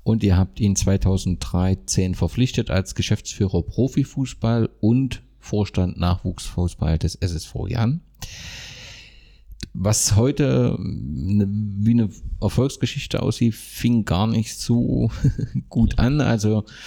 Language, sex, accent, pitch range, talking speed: German, male, German, 95-115 Hz, 100 wpm